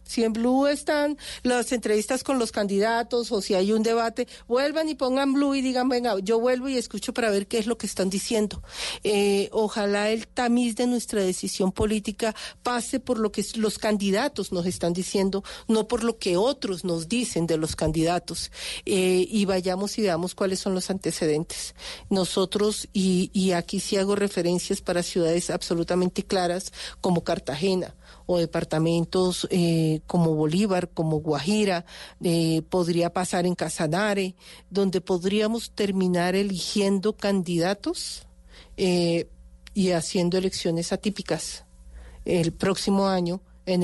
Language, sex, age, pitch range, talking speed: Spanish, female, 40-59, 175-215 Hz, 145 wpm